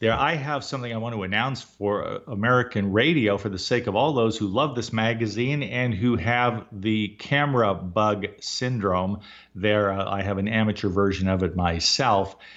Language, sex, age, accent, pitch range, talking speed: English, male, 50-69, American, 105-145 Hz, 180 wpm